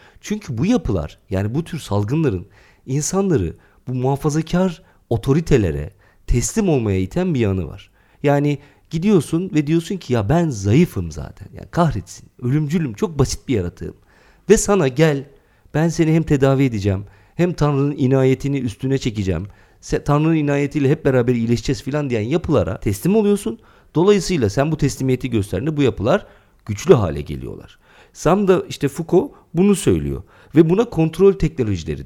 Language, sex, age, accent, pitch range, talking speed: Turkish, male, 50-69, native, 105-160 Hz, 140 wpm